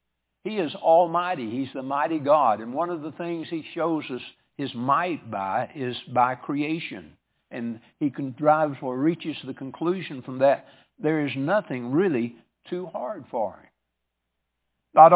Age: 60-79